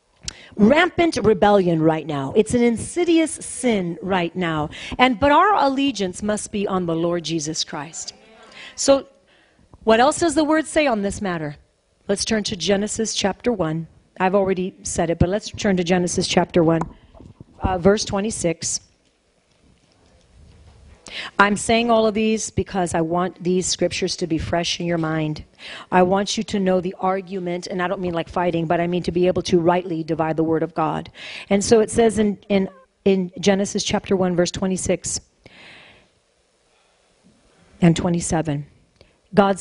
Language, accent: English, American